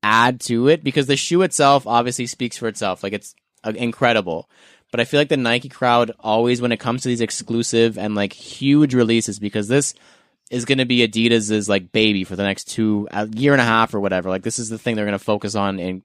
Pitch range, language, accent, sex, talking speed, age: 105-120 Hz, English, American, male, 240 wpm, 20-39